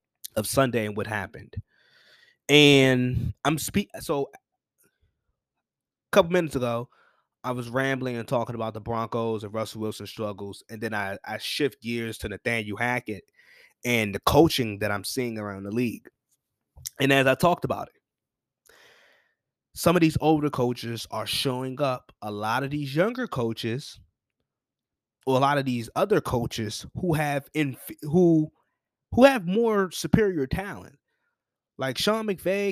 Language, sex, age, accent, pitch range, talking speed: English, male, 20-39, American, 120-160 Hz, 150 wpm